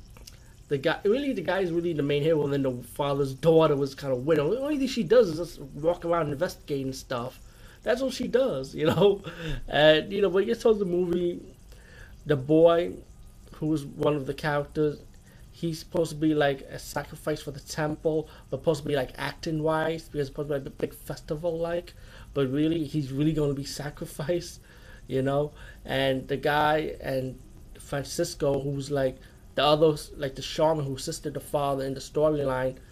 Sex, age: male, 30-49